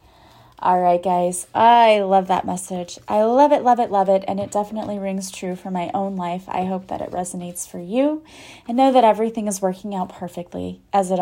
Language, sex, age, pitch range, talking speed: English, female, 30-49, 190-240 Hz, 215 wpm